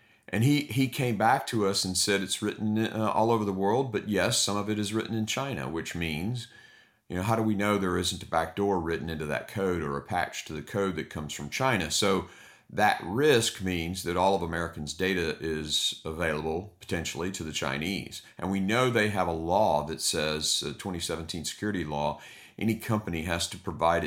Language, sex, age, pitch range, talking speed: English, male, 50-69, 80-105 Hz, 205 wpm